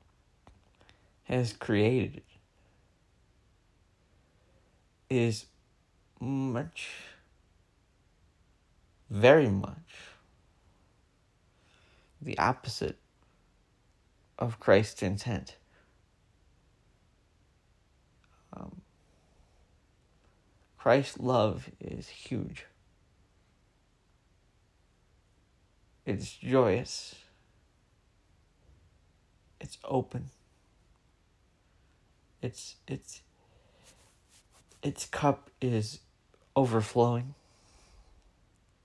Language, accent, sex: English, American, male